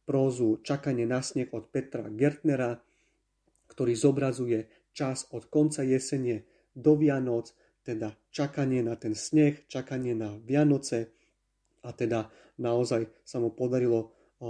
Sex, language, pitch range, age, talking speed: male, Slovak, 115-135 Hz, 30-49, 115 wpm